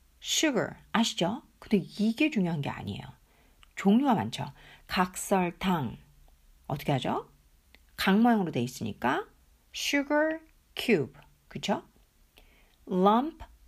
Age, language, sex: 50-69, Korean, female